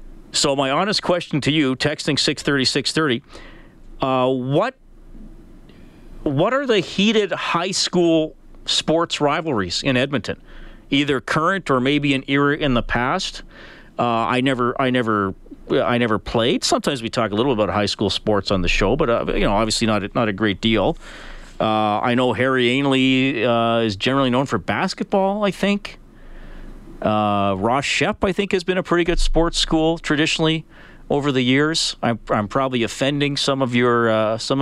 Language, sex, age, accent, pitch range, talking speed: English, male, 40-59, American, 120-160 Hz, 175 wpm